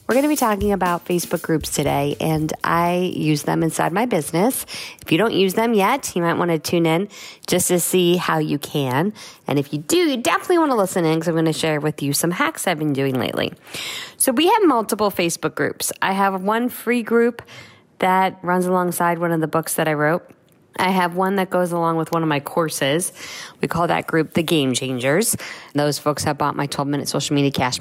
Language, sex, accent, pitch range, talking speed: English, female, American, 150-195 Hz, 225 wpm